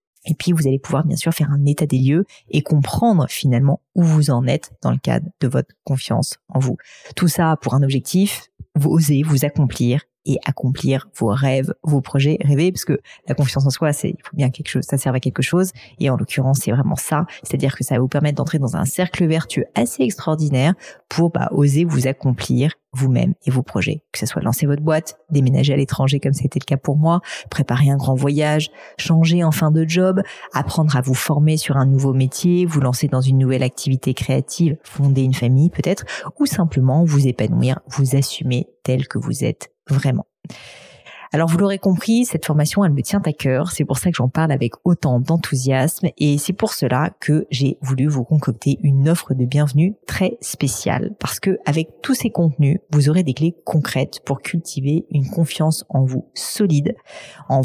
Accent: French